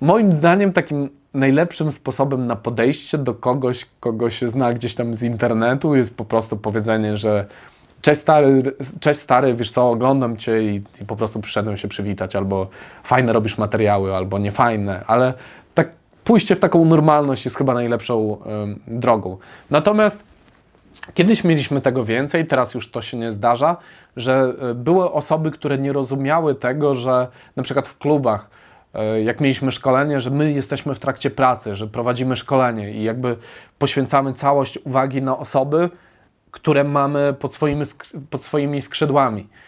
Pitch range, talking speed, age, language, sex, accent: 120-145 Hz, 150 wpm, 20-39, Polish, male, native